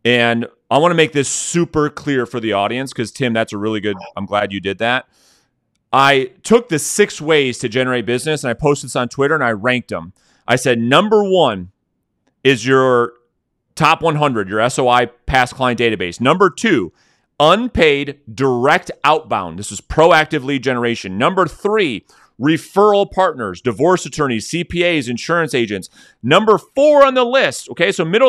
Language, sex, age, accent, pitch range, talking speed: English, male, 30-49, American, 125-180 Hz, 170 wpm